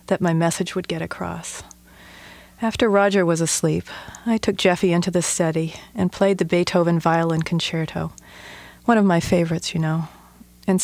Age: 40-59